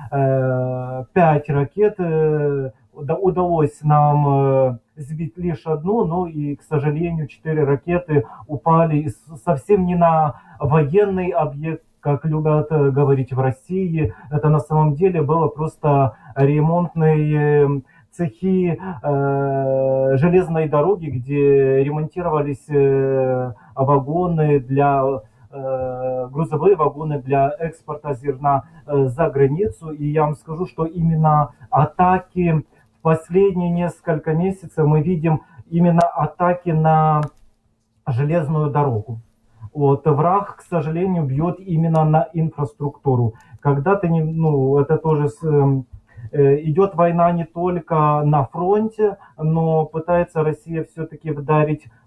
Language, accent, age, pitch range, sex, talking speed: Russian, native, 30-49, 140-165 Hz, male, 100 wpm